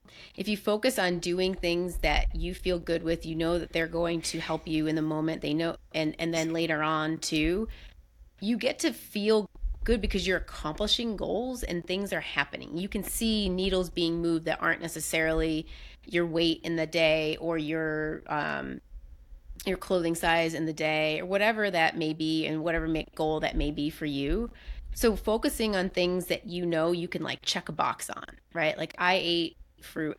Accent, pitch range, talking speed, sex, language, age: American, 155-185 Hz, 195 wpm, female, English, 30-49